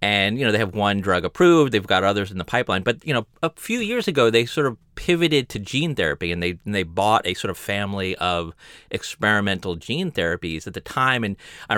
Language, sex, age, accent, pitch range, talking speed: English, male, 30-49, American, 90-120 Hz, 235 wpm